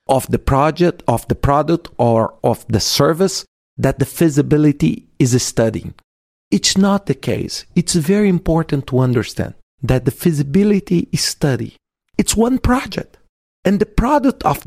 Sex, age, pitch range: male, 40-59, 125-190 Hz